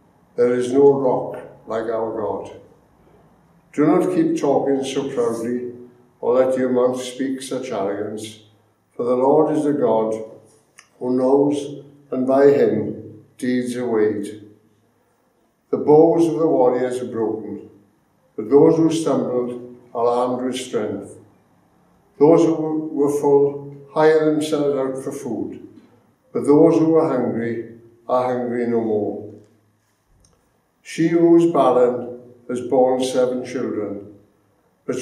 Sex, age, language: male, 60-79, English